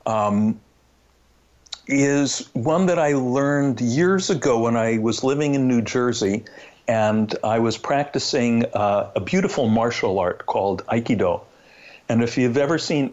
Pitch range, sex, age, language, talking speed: 105-135 Hz, male, 60-79, English, 140 wpm